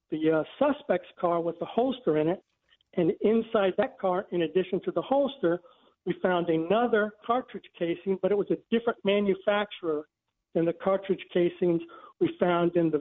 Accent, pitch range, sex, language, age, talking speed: American, 170-205 Hz, male, English, 60-79, 170 wpm